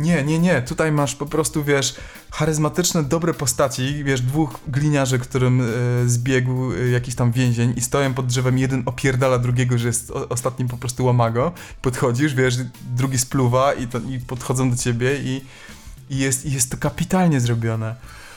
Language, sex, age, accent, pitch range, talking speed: Polish, male, 20-39, native, 115-135 Hz, 155 wpm